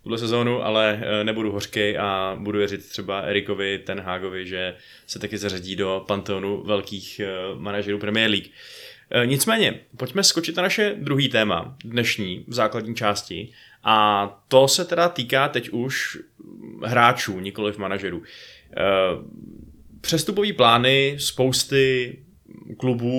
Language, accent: Czech, native